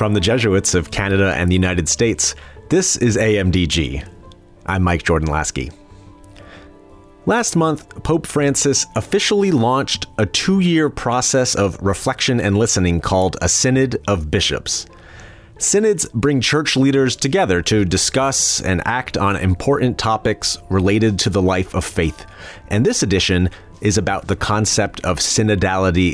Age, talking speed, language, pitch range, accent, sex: 30-49, 140 wpm, English, 95-130 Hz, American, male